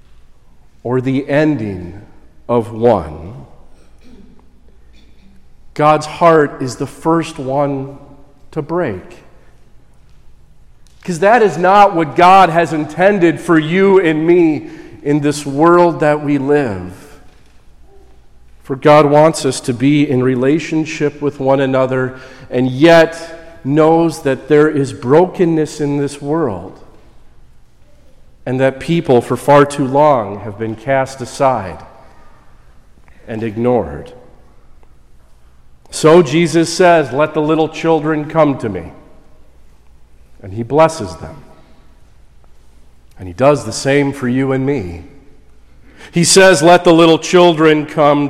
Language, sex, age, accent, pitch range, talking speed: English, male, 40-59, American, 115-155 Hz, 120 wpm